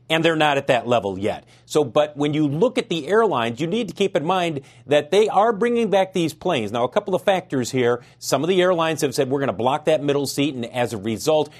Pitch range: 125-165 Hz